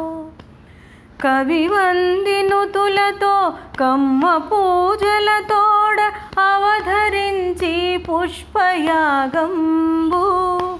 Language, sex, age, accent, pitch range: Telugu, female, 30-49, native, 265-360 Hz